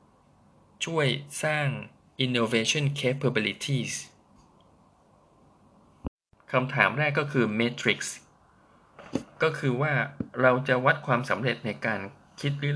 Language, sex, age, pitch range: Thai, male, 20-39, 110-140 Hz